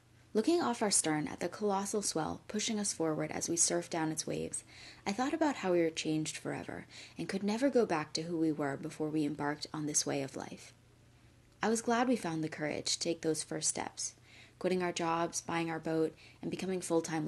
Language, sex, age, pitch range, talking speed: English, female, 20-39, 125-195 Hz, 220 wpm